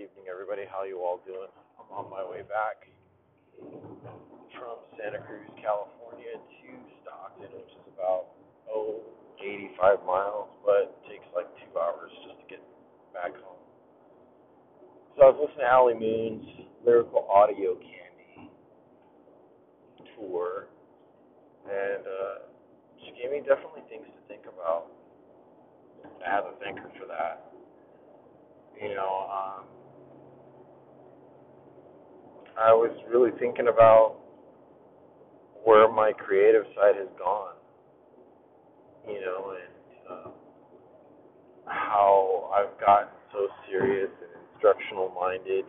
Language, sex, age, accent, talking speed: English, male, 40-59, American, 115 wpm